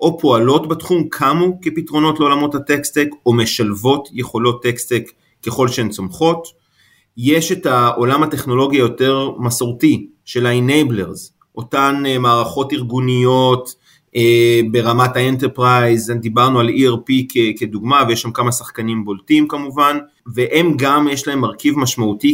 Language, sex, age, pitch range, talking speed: Hebrew, male, 30-49, 120-145 Hz, 115 wpm